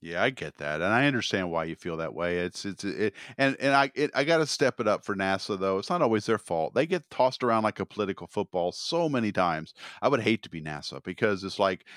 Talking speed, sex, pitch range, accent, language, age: 265 wpm, male, 85-120 Hz, American, English, 40-59